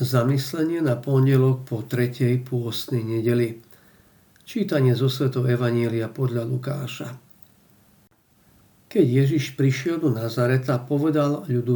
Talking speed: 100 wpm